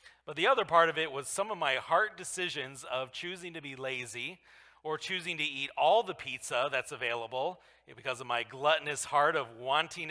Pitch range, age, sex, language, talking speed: 135-175 Hz, 40-59, male, English, 195 wpm